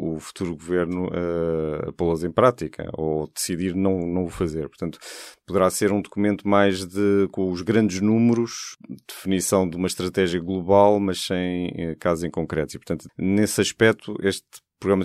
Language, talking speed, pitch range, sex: Portuguese, 170 wpm, 90-105 Hz, male